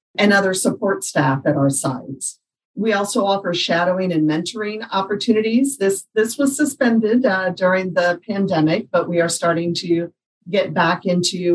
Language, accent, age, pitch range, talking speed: English, American, 50-69, 160-195 Hz, 155 wpm